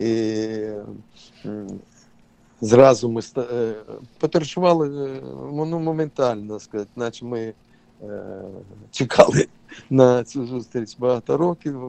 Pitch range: 115-135 Hz